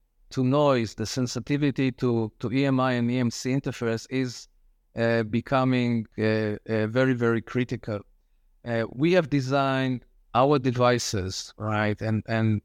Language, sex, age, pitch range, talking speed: English, male, 50-69, 115-135 Hz, 130 wpm